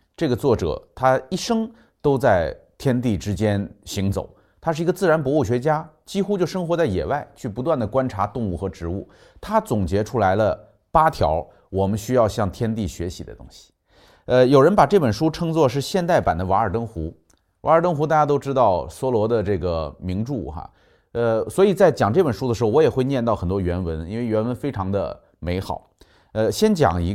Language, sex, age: Chinese, male, 30-49